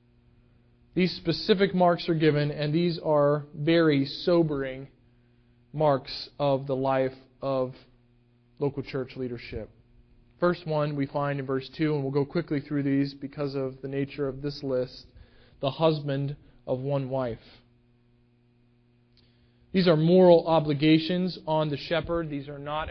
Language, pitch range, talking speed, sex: English, 130-165 Hz, 140 wpm, male